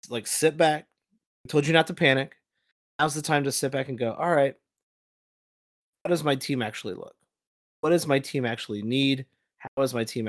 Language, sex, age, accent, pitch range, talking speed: English, male, 30-49, American, 115-145 Hz, 205 wpm